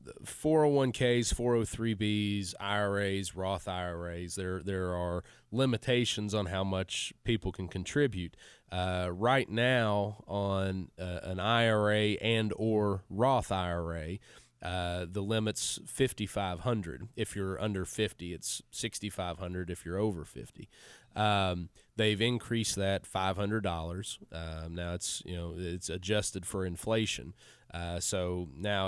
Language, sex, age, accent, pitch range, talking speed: English, male, 30-49, American, 90-110 Hz, 125 wpm